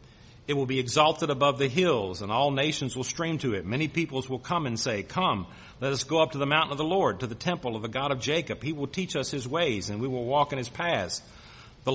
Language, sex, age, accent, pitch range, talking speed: English, male, 50-69, American, 115-145 Hz, 265 wpm